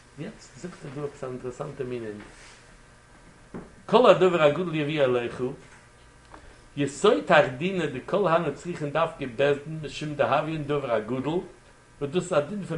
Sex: male